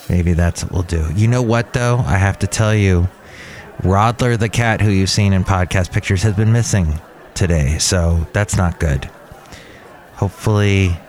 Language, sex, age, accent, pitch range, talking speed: English, male, 30-49, American, 100-125 Hz, 175 wpm